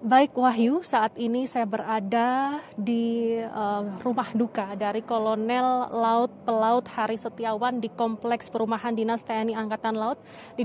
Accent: native